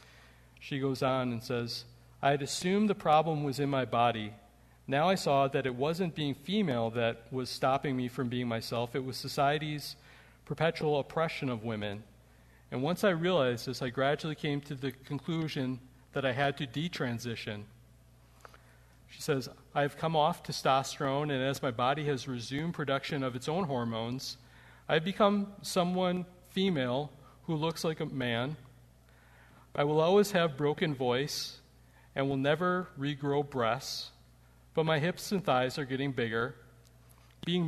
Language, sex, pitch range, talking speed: English, male, 120-150 Hz, 155 wpm